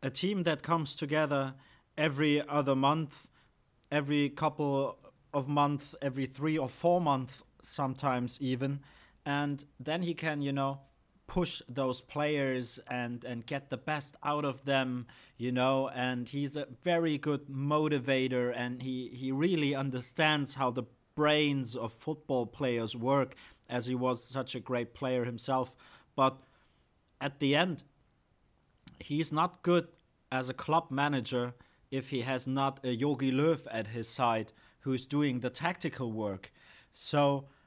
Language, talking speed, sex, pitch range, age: English, 145 wpm, male, 130-150 Hz, 30-49